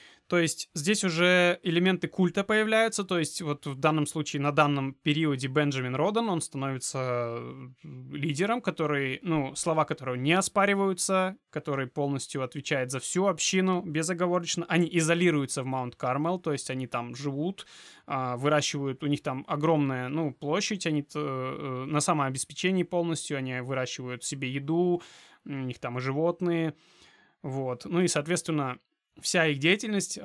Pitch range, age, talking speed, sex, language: 135-175 Hz, 20-39, 140 wpm, male, Russian